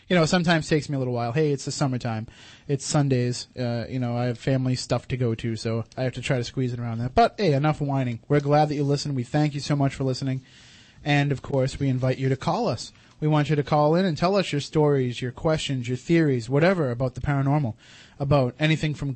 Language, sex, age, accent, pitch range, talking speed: English, male, 30-49, American, 130-155 Hz, 255 wpm